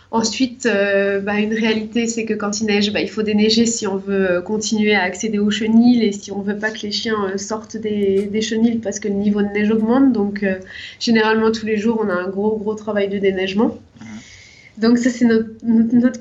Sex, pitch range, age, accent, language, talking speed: female, 195-225 Hz, 20-39, French, French, 225 wpm